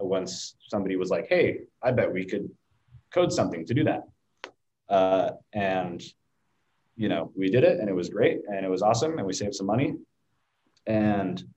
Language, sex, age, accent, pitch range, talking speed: English, male, 20-39, American, 95-115 Hz, 180 wpm